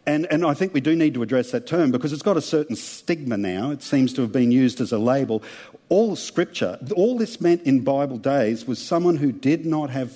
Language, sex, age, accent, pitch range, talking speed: English, male, 50-69, Australian, 125-165 Hz, 240 wpm